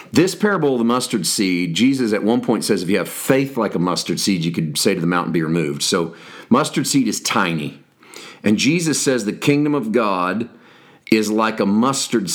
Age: 40-59